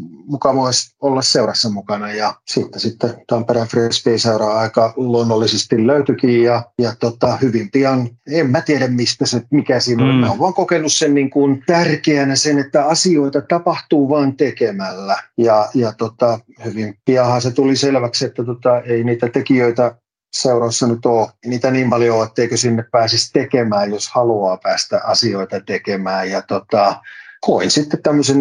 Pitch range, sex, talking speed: 115-135 Hz, male, 145 wpm